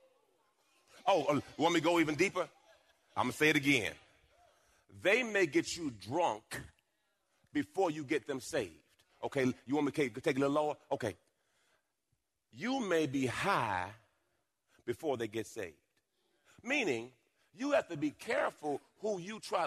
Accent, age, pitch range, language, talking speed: American, 40-59, 155-255 Hz, English, 155 wpm